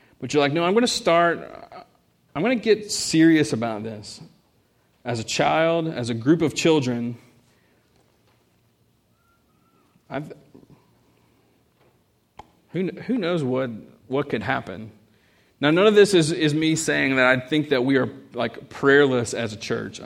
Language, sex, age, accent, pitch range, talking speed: English, male, 40-59, American, 120-155 Hz, 150 wpm